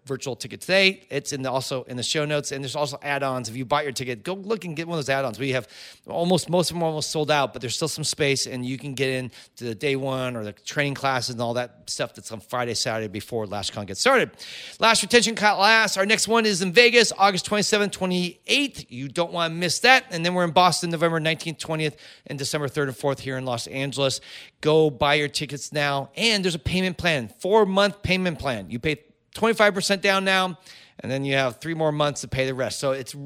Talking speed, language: 245 wpm, English